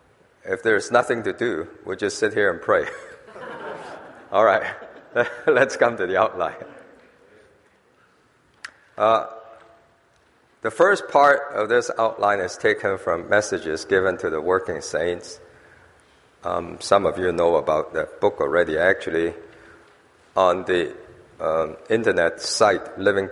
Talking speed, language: 130 wpm, English